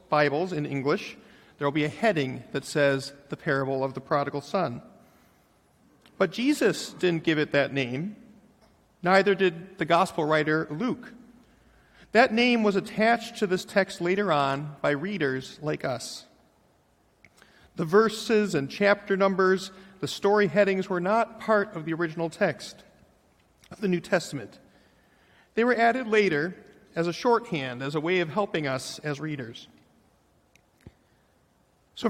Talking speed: 145 wpm